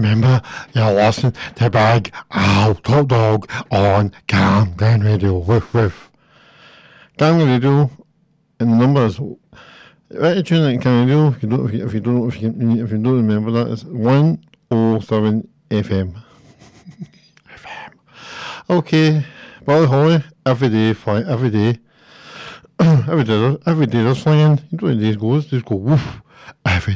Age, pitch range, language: 60-79, 110-155 Hz, English